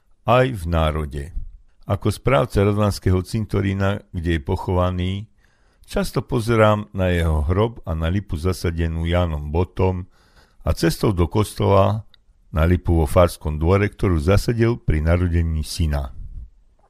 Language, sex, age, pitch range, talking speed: Slovak, male, 50-69, 80-105 Hz, 125 wpm